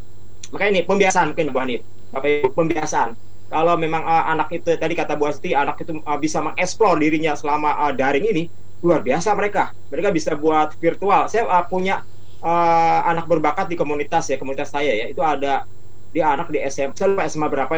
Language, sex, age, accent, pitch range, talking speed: Indonesian, male, 30-49, native, 135-190 Hz, 190 wpm